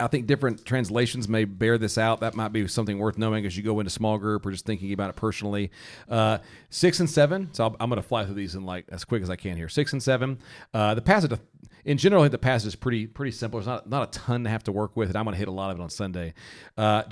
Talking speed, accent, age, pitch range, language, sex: 290 wpm, American, 40-59, 105-135 Hz, English, male